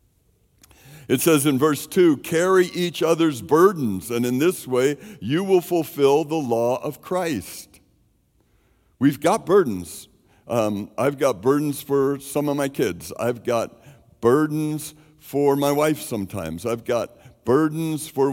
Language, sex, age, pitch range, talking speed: English, male, 60-79, 130-160 Hz, 140 wpm